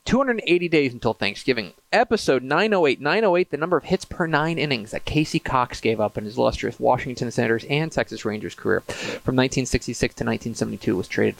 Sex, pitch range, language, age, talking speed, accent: male, 115-155 Hz, English, 30-49, 180 wpm, American